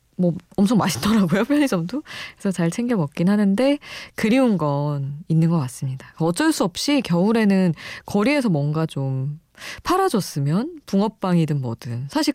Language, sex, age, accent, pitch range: Korean, female, 20-39, native, 150-205 Hz